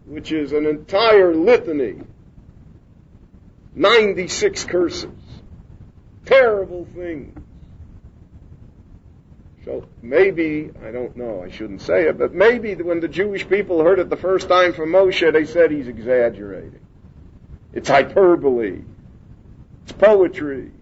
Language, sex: English, male